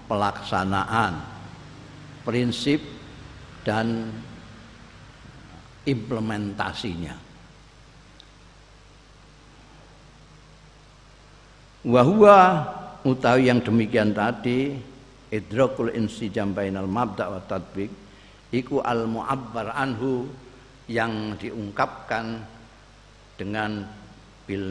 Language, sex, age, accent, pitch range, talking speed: Indonesian, male, 50-69, native, 100-135 Hz, 50 wpm